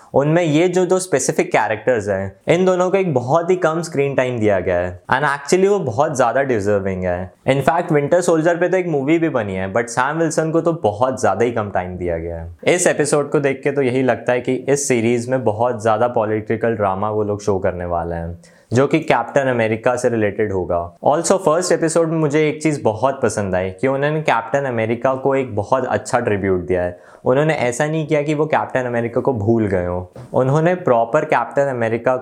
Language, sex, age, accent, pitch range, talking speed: Hindi, male, 20-39, native, 105-155 Hz, 215 wpm